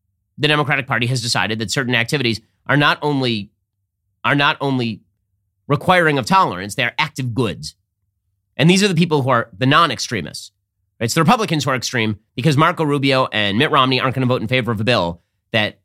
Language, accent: English, American